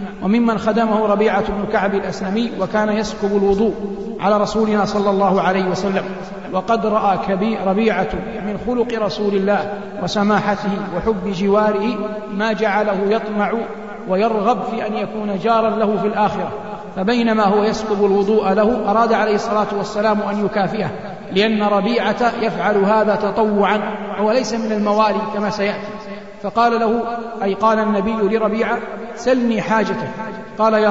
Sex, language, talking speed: male, Arabic, 130 wpm